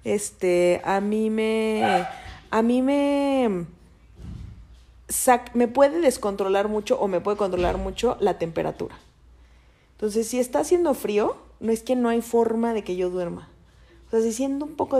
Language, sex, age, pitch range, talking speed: Spanish, female, 30-49, 180-225 Hz, 160 wpm